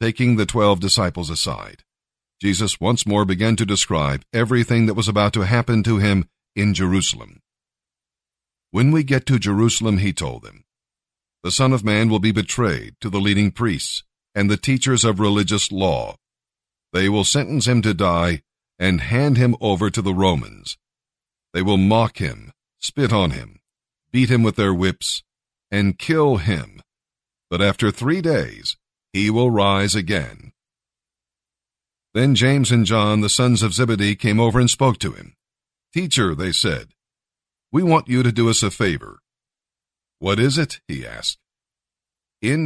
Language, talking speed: English, 160 wpm